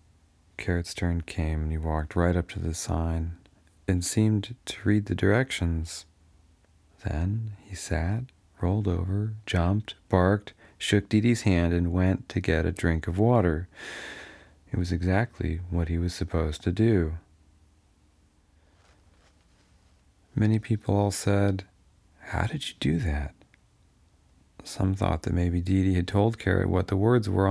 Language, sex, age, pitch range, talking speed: English, male, 40-59, 80-100 Hz, 140 wpm